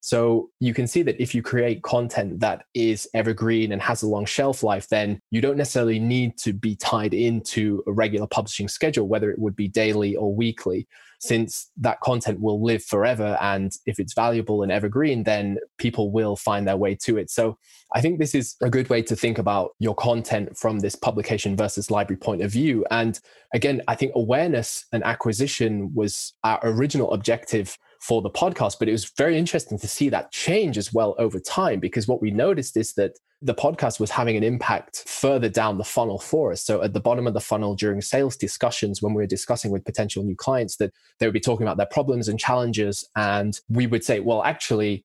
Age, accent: 20-39, British